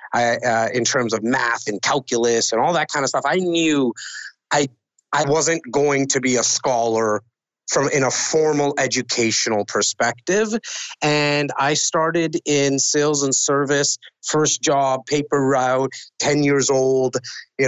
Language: English